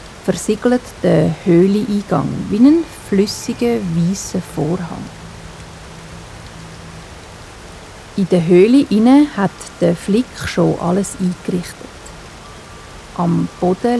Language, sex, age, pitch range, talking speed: German, female, 50-69, 170-200 Hz, 80 wpm